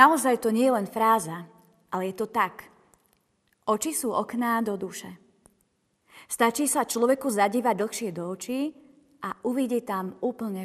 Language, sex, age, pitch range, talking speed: Slovak, female, 30-49, 200-245 Hz, 145 wpm